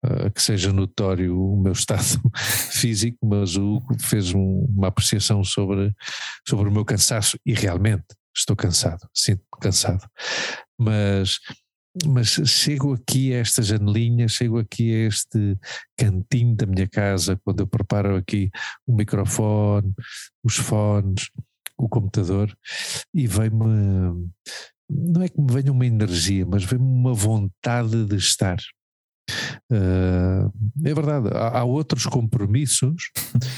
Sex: male